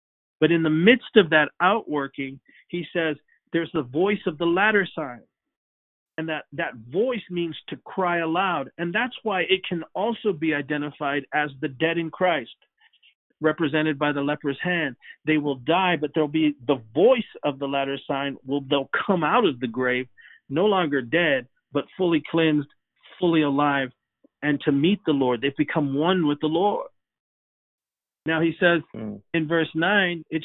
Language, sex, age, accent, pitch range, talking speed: English, male, 50-69, American, 140-175 Hz, 170 wpm